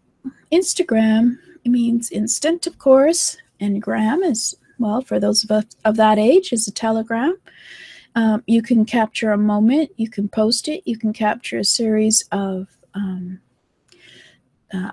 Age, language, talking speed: 40-59, English, 150 wpm